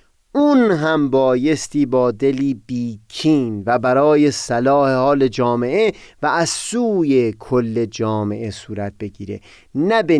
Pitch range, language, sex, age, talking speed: 115-180 Hz, Persian, male, 30-49, 120 wpm